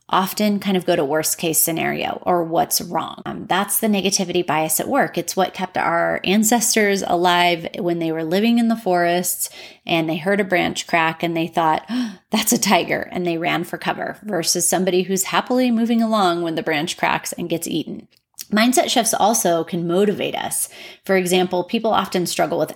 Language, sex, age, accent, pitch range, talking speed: English, female, 30-49, American, 170-200 Hz, 190 wpm